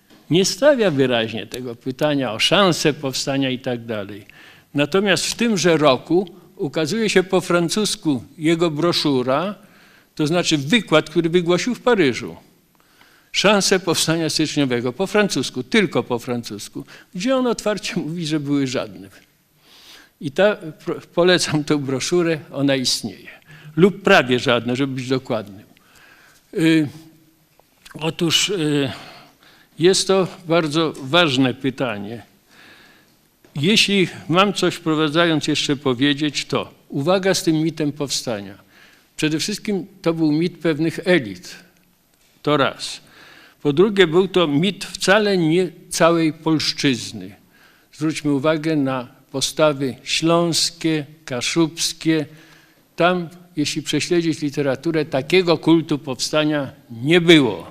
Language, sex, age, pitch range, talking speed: Polish, male, 50-69, 140-175 Hz, 115 wpm